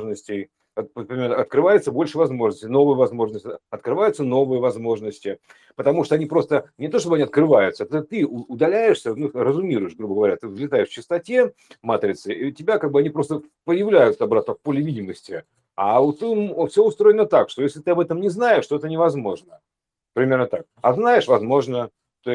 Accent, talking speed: native, 170 wpm